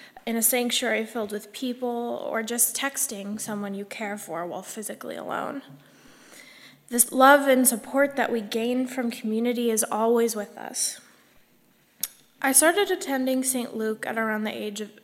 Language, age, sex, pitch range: English, 10-29, female, 225-275 Hz